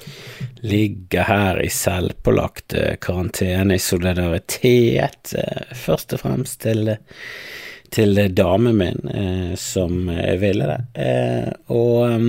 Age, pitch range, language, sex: 30-49, 90-120 Hz, English, male